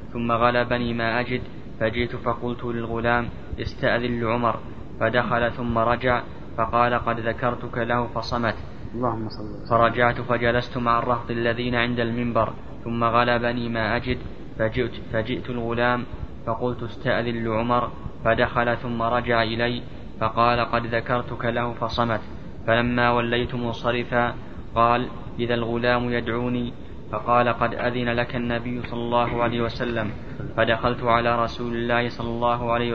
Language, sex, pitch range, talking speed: Arabic, male, 115-120 Hz, 120 wpm